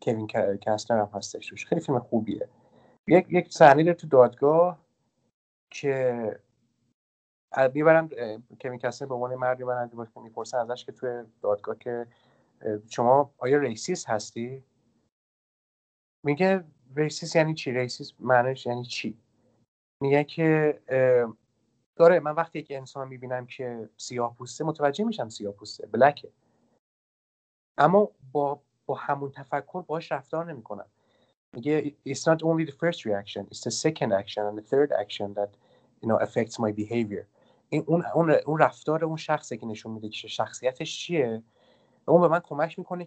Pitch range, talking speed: 115-155 Hz, 115 wpm